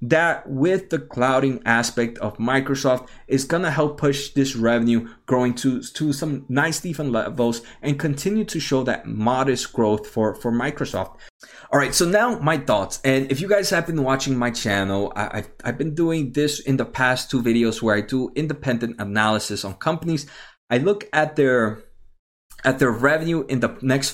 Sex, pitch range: male, 115-150 Hz